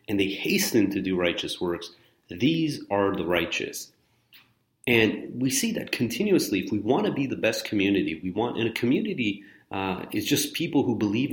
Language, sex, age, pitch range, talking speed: English, male, 30-49, 100-130 Hz, 185 wpm